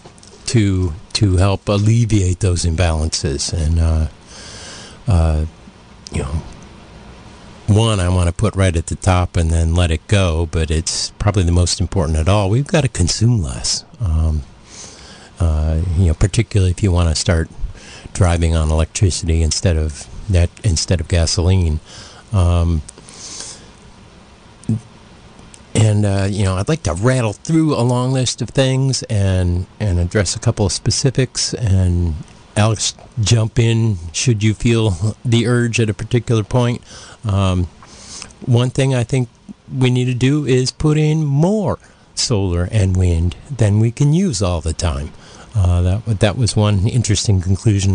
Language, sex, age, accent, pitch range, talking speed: English, male, 50-69, American, 85-115 Hz, 155 wpm